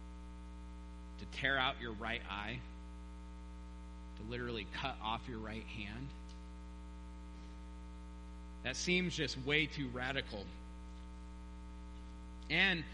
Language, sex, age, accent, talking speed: English, male, 30-49, American, 95 wpm